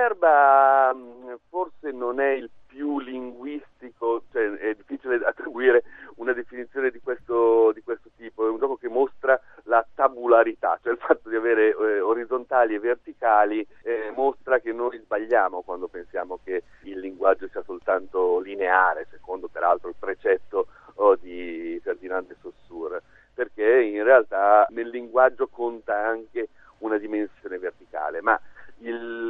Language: Italian